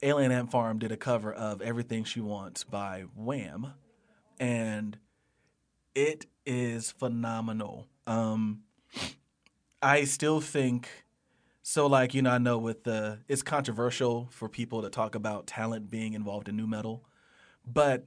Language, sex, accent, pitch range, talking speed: English, male, American, 110-125 Hz, 140 wpm